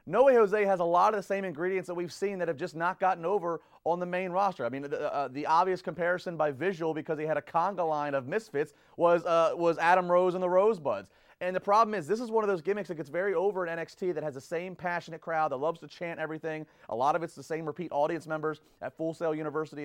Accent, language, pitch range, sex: American, English, 145-180 Hz, male